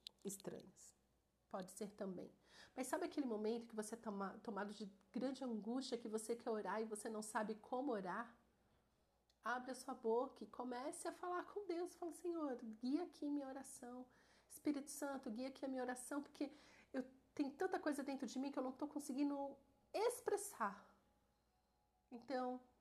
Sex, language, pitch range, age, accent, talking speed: female, Portuguese, 195-255 Hz, 40-59, Brazilian, 170 wpm